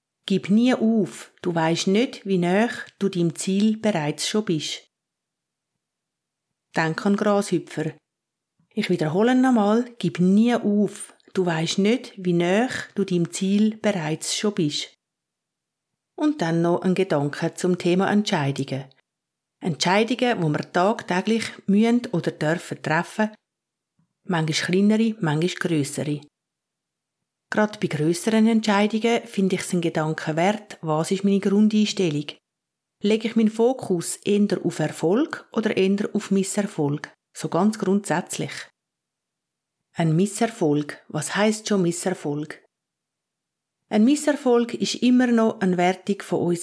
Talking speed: 125 wpm